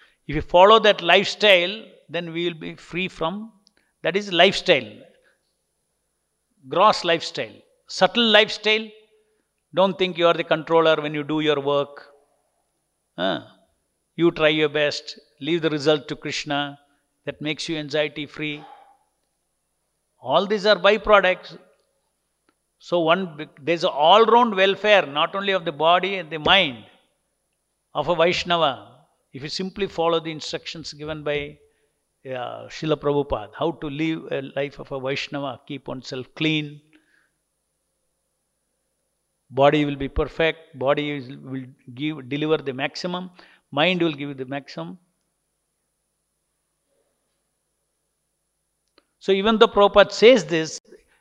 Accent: Indian